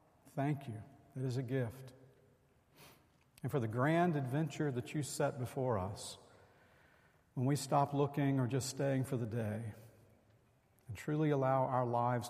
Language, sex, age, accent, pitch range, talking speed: English, male, 50-69, American, 120-150 Hz, 150 wpm